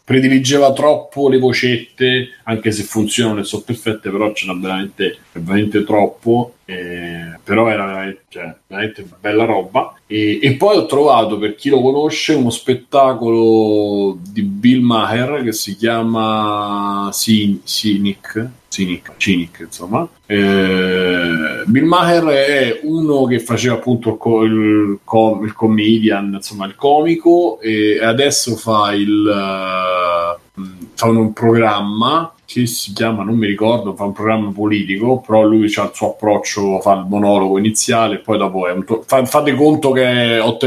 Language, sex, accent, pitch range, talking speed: Italian, male, native, 100-115 Hz, 150 wpm